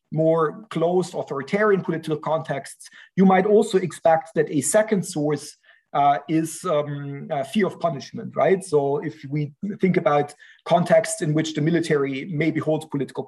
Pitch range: 150-195 Hz